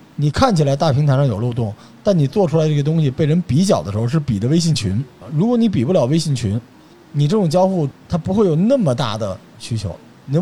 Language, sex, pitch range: Chinese, male, 120-170 Hz